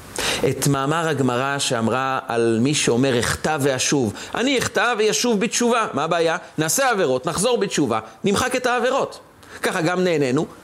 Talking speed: 140 wpm